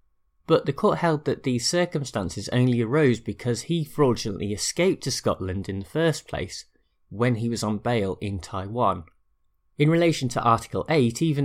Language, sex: English, male